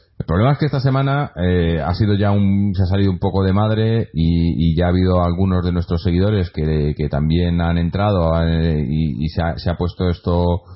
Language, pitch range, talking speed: Spanish, 85-100 Hz, 235 wpm